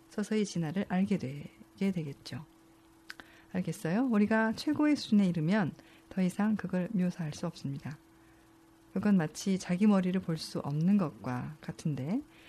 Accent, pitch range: native, 160-215 Hz